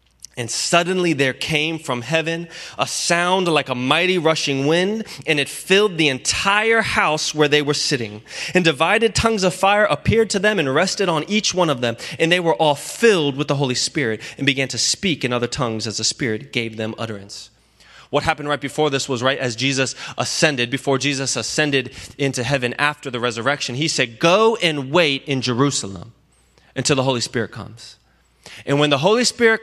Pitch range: 110-155 Hz